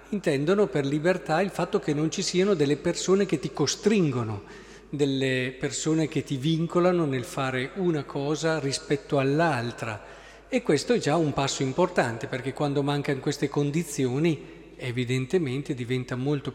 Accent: native